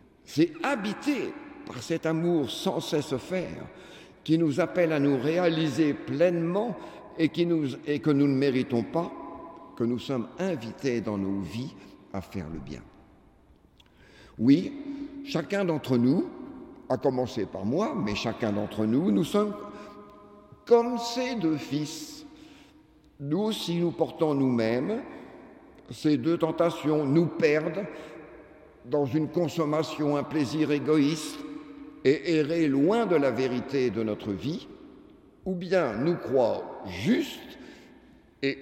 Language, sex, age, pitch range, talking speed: French, male, 60-79, 130-210 Hz, 125 wpm